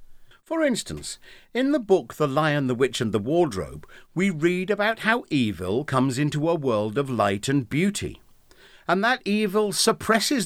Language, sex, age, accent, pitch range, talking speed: English, male, 50-69, British, 120-200 Hz, 165 wpm